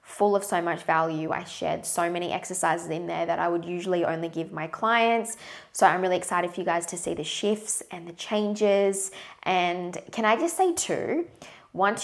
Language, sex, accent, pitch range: English, female, Australian, 170-210 Hz